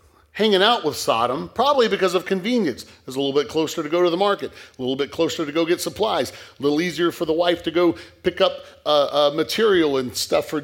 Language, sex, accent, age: English, male, American, 40-59